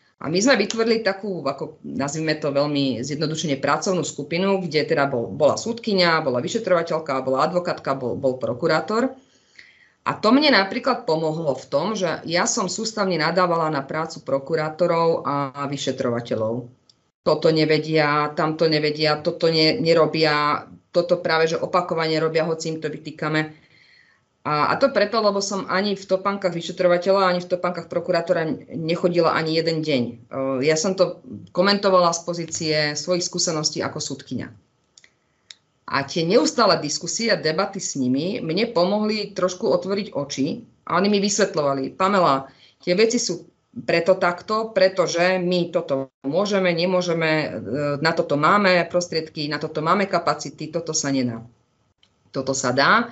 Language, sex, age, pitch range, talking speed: Slovak, female, 30-49, 150-185 Hz, 140 wpm